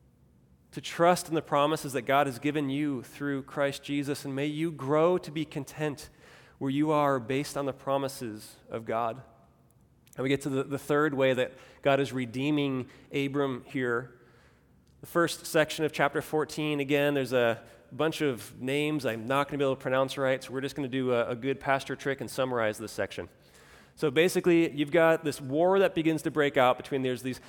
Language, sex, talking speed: English, male, 200 wpm